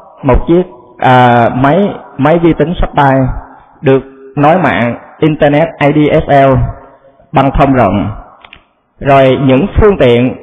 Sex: male